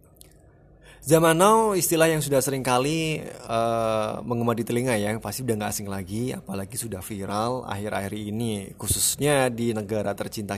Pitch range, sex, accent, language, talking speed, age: 110-135 Hz, male, native, Indonesian, 140 wpm, 20-39